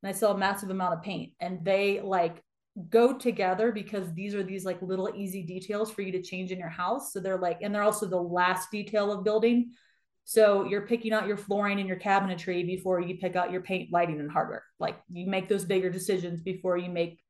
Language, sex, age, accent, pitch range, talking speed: English, female, 30-49, American, 180-215 Hz, 230 wpm